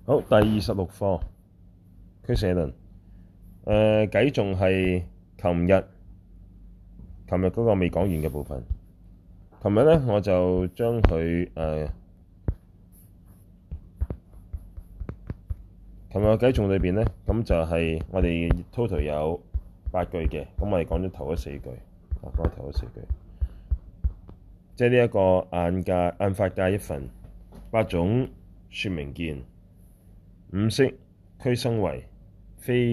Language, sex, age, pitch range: Chinese, male, 20-39, 85-95 Hz